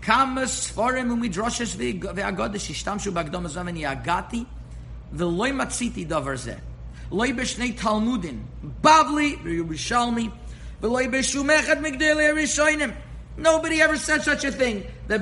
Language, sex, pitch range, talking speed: English, male, 150-240 Hz, 130 wpm